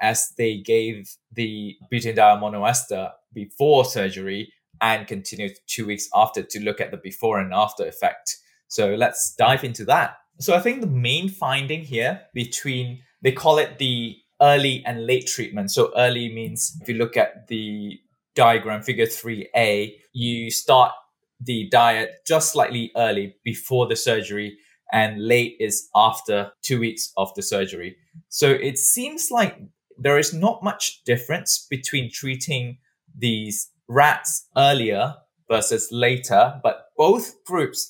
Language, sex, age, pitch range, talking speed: English, male, 20-39, 110-140 Hz, 145 wpm